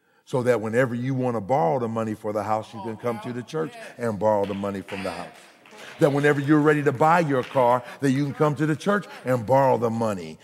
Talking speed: 255 wpm